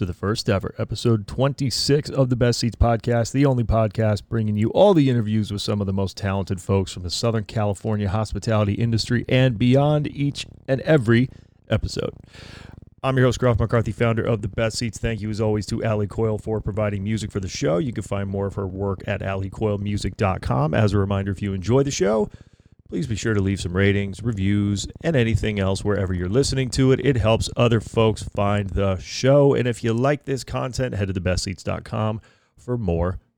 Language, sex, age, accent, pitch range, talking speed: English, male, 30-49, American, 100-120 Hz, 200 wpm